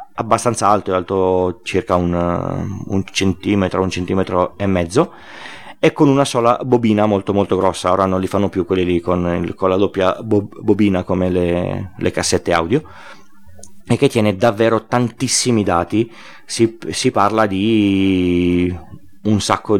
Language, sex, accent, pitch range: Italian, male, native, 90-110 Hz